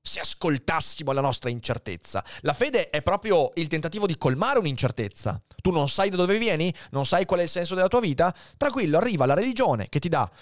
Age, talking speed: 30-49, 205 wpm